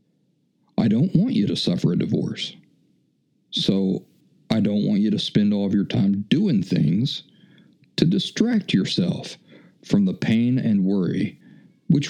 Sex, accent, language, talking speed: male, American, English, 150 wpm